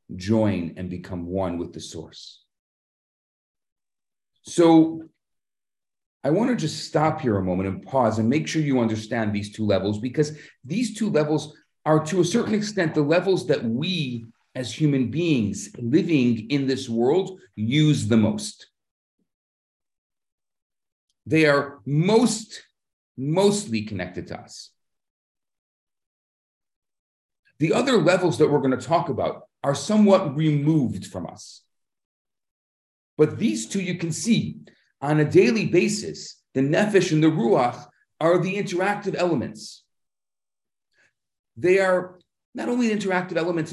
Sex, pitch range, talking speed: male, 110-180 Hz, 130 wpm